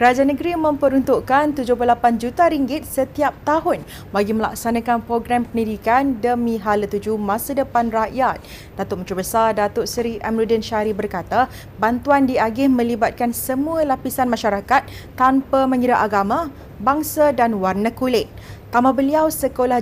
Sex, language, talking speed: female, Malay, 125 wpm